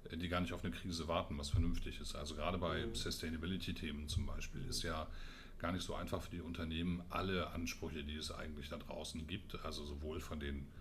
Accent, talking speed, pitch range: German, 205 wpm, 80-90 Hz